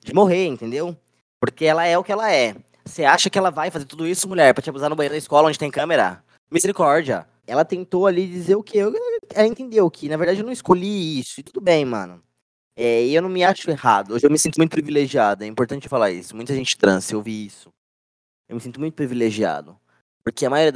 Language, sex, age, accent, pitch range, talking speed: Portuguese, male, 20-39, Brazilian, 115-155 Hz, 230 wpm